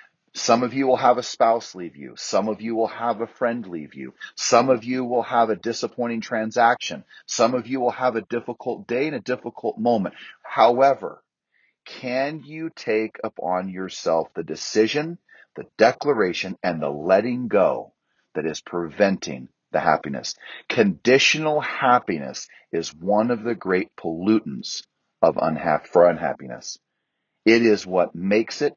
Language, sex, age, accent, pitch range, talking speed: English, male, 40-59, American, 100-130 Hz, 155 wpm